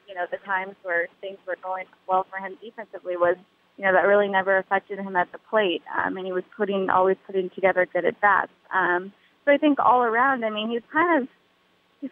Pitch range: 185-225 Hz